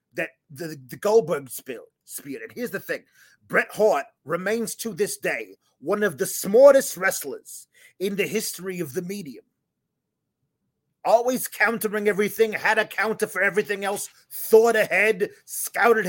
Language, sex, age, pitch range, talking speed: English, male, 30-49, 165-220 Hz, 145 wpm